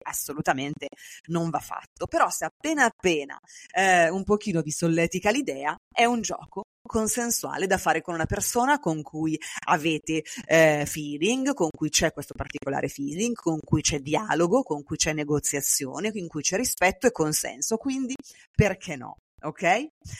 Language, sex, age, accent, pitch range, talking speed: Italian, female, 30-49, native, 150-185 Hz, 155 wpm